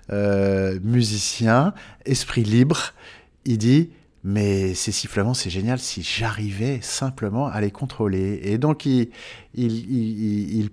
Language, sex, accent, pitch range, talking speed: French, male, French, 105-135 Hz, 130 wpm